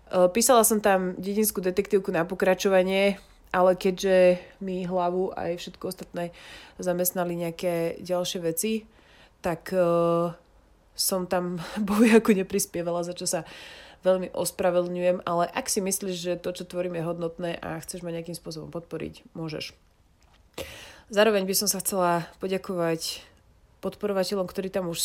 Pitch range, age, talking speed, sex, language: 170-190 Hz, 30-49, 135 wpm, female, Slovak